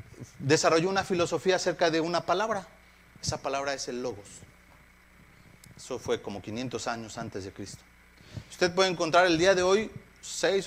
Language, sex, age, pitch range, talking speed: Spanish, male, 40-59, 120-170 Hz, 155 wpm